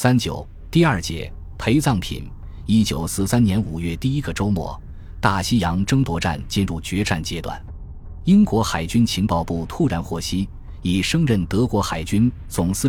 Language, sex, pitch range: Chinese, male, 85-110 Hz